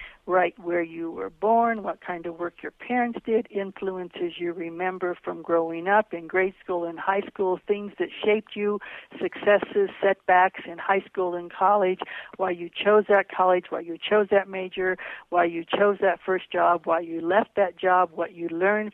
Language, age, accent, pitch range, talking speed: English, 60-79, American, 180-210 Hz, 185 wpm